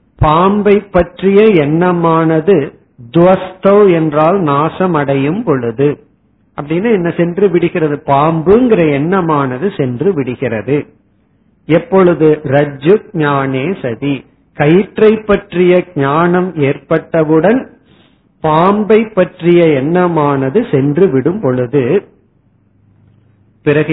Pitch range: 145-185 Hz